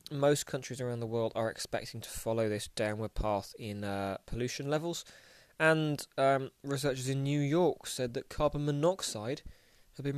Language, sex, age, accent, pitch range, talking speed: English, male, 20-39, British, 115-140 Hz, 165 wpm